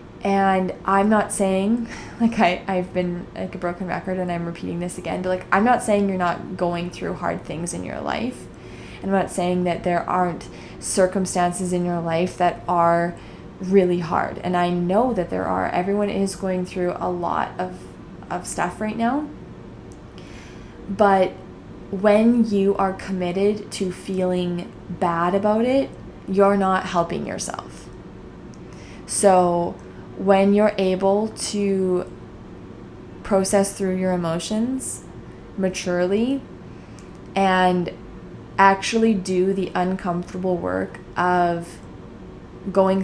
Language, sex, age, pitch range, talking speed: English, female, 20-39, 175-195 Hz, 130 wpm